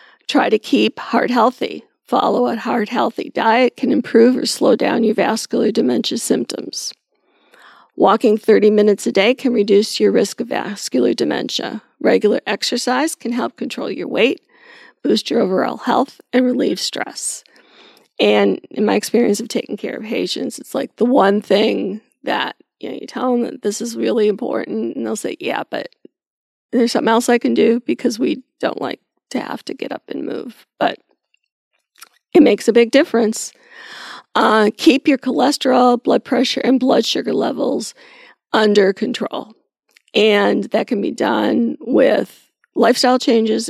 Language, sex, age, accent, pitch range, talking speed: English, female, 40-59, American, 220-270 Hz, 160 wpm